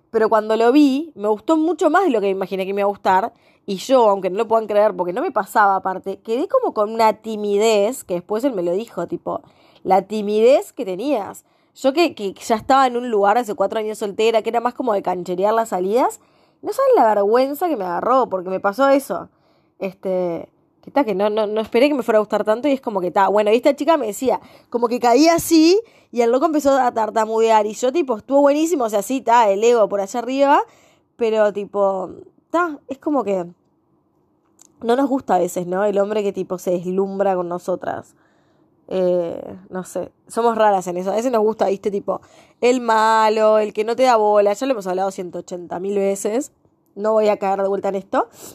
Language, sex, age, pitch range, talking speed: Spanish, female, 20-39, 195-250 Hz, 220 wpm